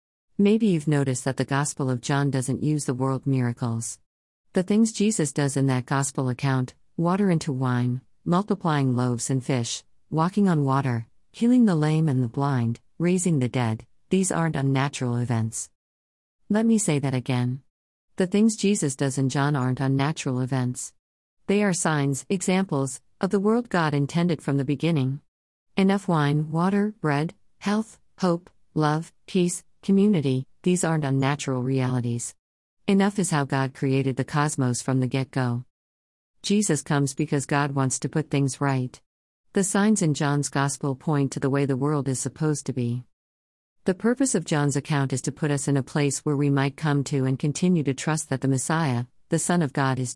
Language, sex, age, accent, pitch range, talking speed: English, female, 50-69, American, 130-170 Hz, 175 wpm